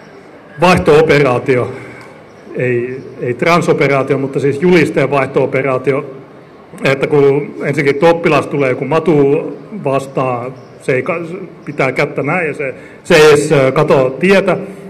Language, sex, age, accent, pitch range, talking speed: Finnish, male, 30-49, native, 130-175 Hz, 120 wpm